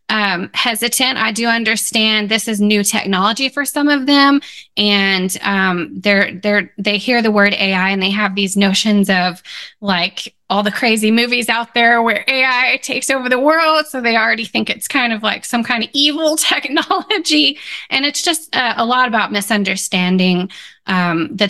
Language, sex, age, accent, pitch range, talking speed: English, female, 20-39, American, 190-235 Hz, 180 wpm